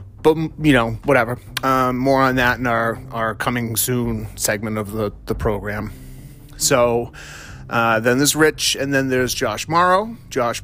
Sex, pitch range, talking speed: male, 105-130 Hz, 165 wpm